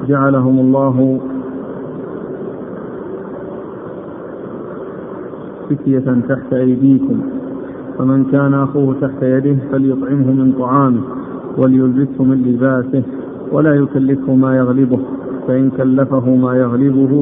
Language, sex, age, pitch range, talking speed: Arabic, male, 50-69, 130-135 Hz, 85 wpm